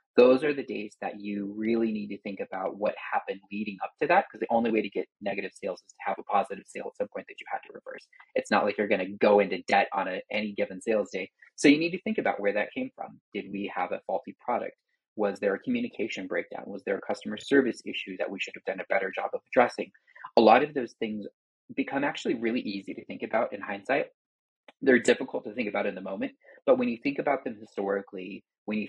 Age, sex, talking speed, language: 30-49, male, 255 wpm, English